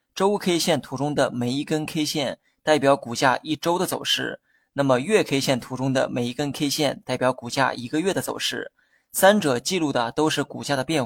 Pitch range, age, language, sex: 135-165 Hz, 20-39, Chinese, male